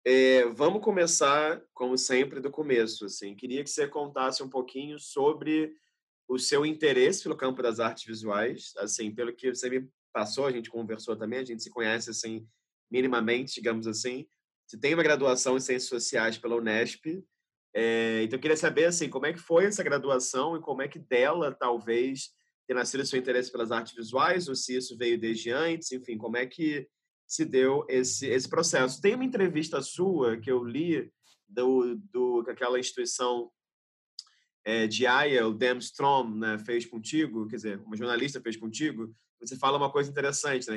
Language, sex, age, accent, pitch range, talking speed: Portuguese, male, 20-39, Brazilian, 115-140 Hz, 180 wpm